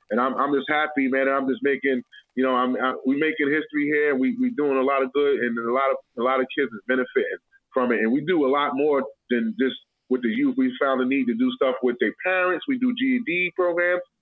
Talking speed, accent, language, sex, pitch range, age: 260 wpm, American, English, male, 125-160 Hz, 20-39